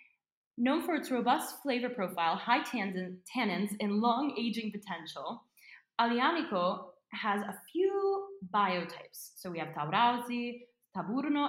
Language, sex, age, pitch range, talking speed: English, female, 10-29, 165-235 Hz, 115 wpm